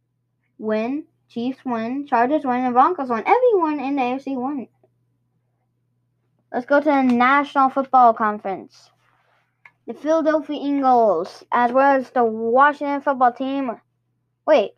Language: English